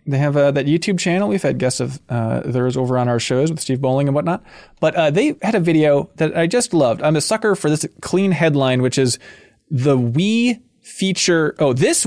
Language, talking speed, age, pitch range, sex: English, 225 wpm, 20-39, 130-175 Hz, male